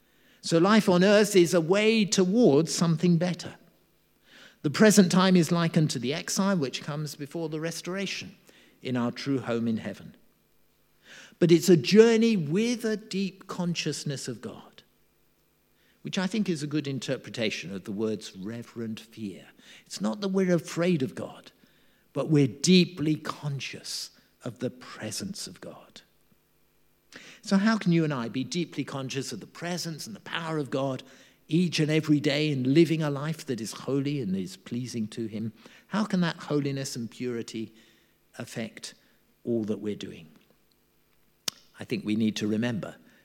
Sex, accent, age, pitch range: male, British, 50-69, 120-180 Hz